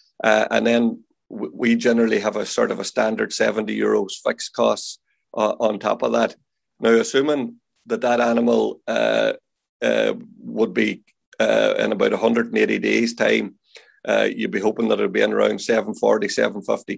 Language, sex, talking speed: English, male, 165 wpm